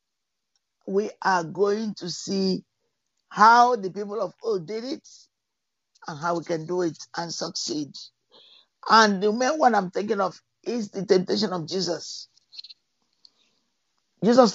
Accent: Nigerian